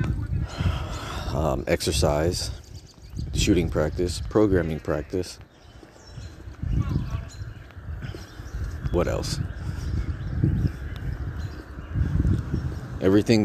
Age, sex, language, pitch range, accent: 30-49, male, English, 80-110 Hz, American